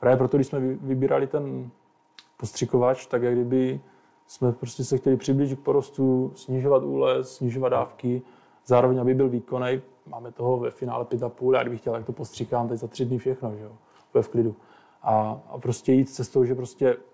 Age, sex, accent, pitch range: 20-39, male, native, 120-135 Hz